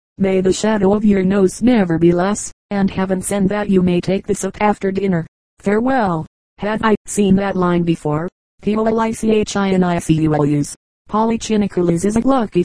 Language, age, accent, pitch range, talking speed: English, 40-59, American, 180-200 Hz, 145 wpm